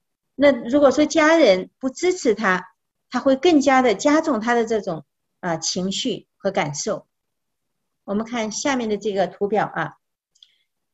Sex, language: female, Chinese